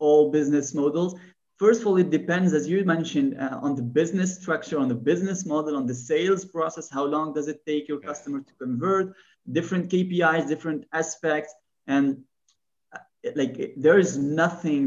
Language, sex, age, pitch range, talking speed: English, male, 30-49, 130-165 Hz, 175 wpm